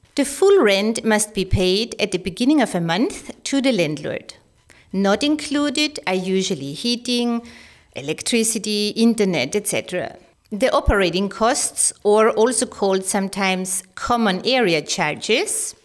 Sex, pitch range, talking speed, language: female, 195-255 Hz, 125 wpm, English